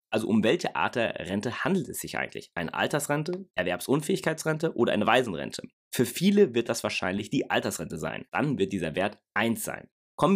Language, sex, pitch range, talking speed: German, male, 115-160 Hz, 180 wpm